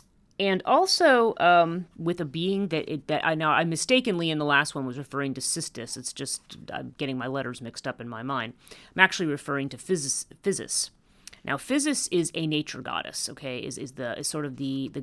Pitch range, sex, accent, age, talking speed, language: 130-175 Hz, female, American, 30-49, 210 wpm, English